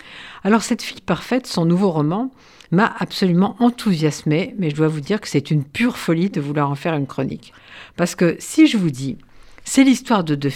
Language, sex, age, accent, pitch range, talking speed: French, female, 50-69, French, 145-190 Hz, 205 wpm